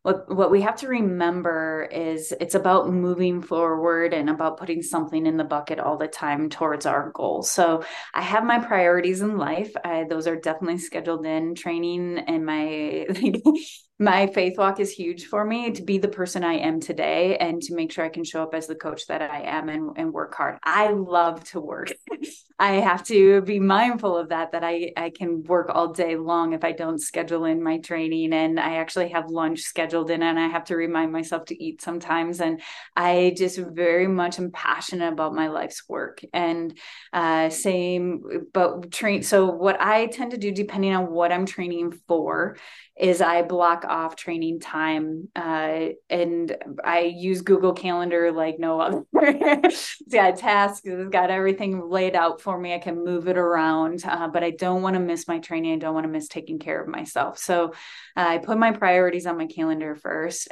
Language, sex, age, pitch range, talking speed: English, female, 20-39, 165-190 Hz, 195 wpm